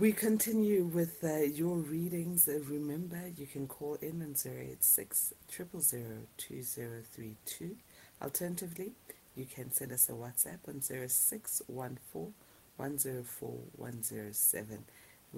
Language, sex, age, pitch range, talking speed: English, female, 60-79, 120-165 Hz, 95 wpm